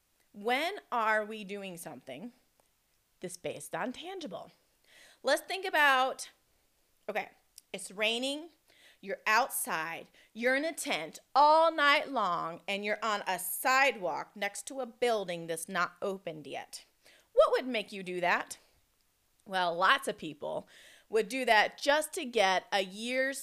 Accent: American